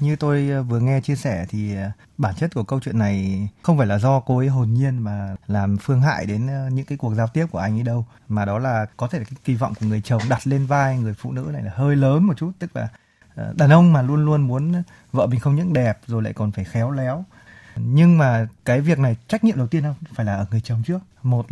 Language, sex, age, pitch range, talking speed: Vietnamese, male, 20-39, 115-155 Hz, 265 wpm